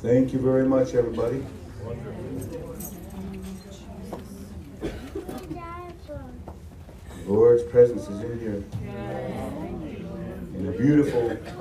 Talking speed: 70 wpm